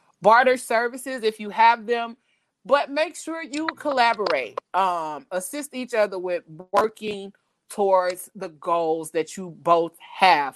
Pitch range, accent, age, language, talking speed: 190-240 Hz, American, 30-49, English, 135 wpm